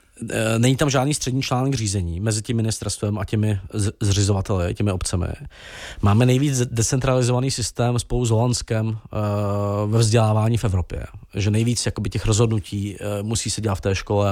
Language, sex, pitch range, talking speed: Czech, male, 100-115 Hz, 150 wpm